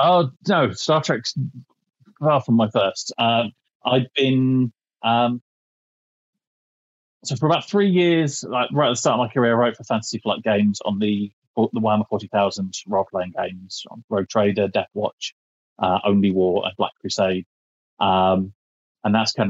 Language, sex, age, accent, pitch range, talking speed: English, male, 30-49, British, 100-125 Hz, 165 wpm